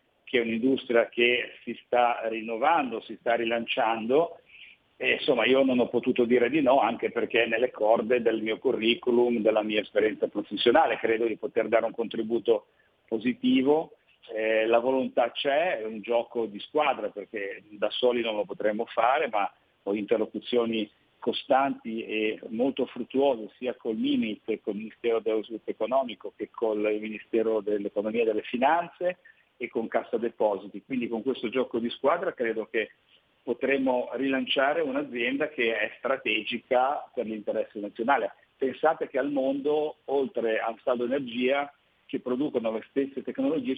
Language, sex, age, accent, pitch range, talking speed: Italian, male, 50-69, native, 115-140 Hz, 150 wpm